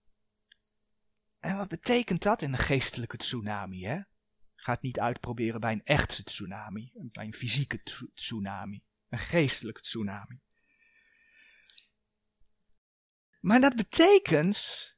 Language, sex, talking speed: Dutch, male, 110 wpm